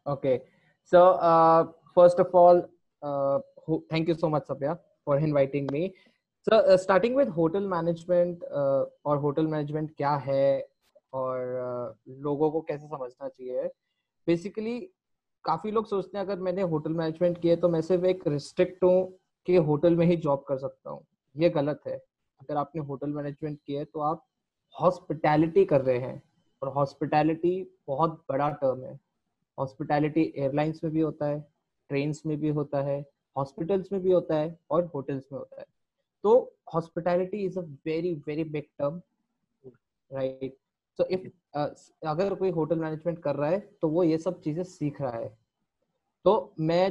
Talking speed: 155 wpm